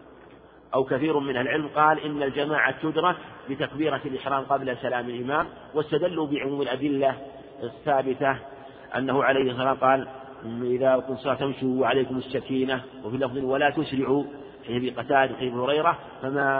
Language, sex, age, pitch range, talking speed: Arabic, male, 50-69, 130-145 Hz, 125 wpm